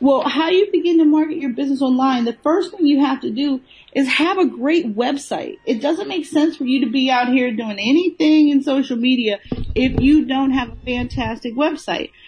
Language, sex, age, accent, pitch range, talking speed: English, female, 40-59, American, 225-280 Hz, 210 wpm